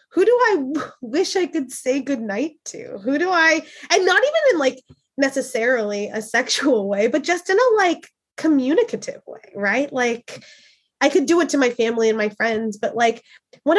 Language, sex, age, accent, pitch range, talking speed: English, female, 20-39, American, 225-295 Hz, 185 wpm